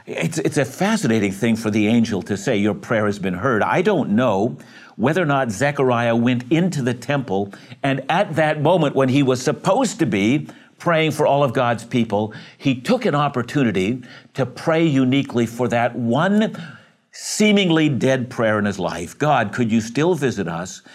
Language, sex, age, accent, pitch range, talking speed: English, male, 60-79, American, 110-145 Hz, 185 wpm